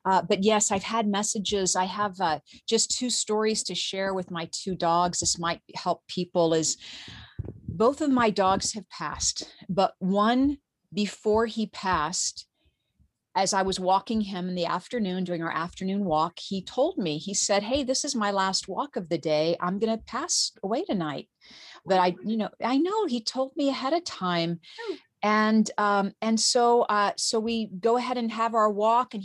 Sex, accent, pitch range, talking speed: female, American, 180-225 Hz, 190 wpm